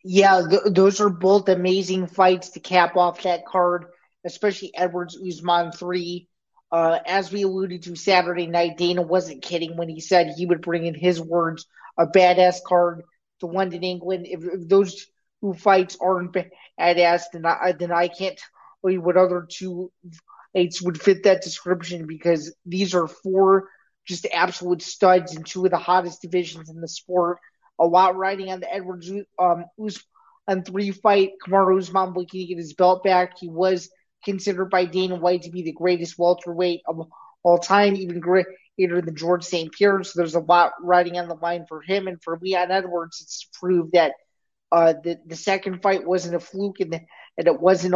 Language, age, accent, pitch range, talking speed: English, 20-39, American, 175-190 Hz, 180 wpm